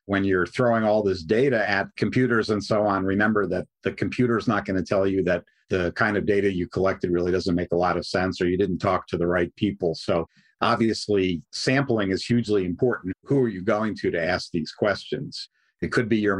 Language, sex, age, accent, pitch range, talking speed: English, male, 50-69, American, 95-120 Hz, 225 wpm